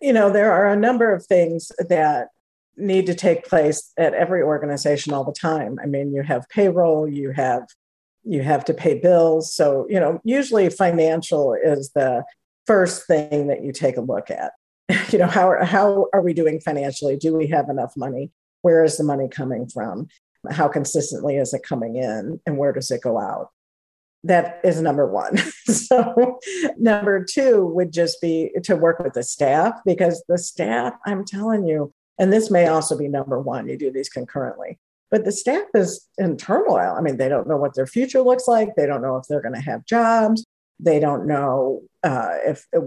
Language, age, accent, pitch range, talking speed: English, 50-69, American, 145-215 Hz, 195 wpm